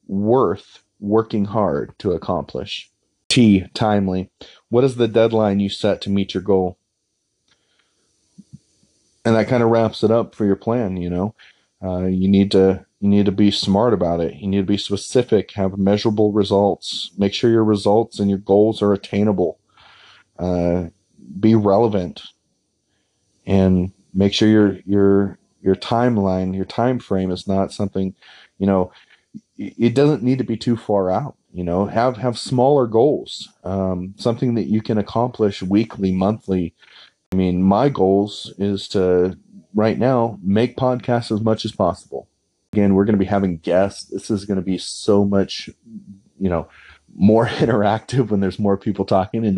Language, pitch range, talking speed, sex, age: English, 95-110 Hz, 165 wpm, male, 30-49